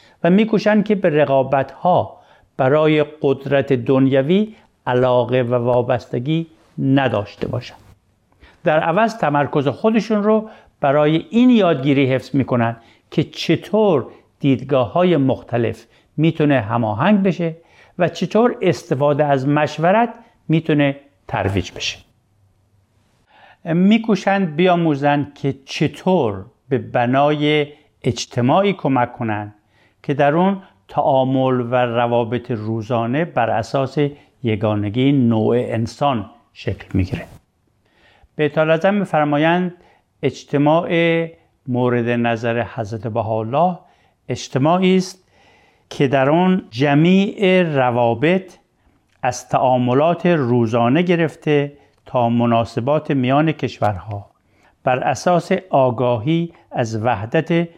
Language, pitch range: Persian, 120-165 Hz